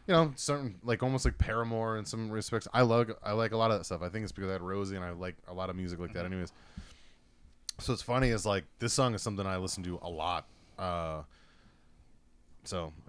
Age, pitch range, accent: 20-39, 85-110 Hz, American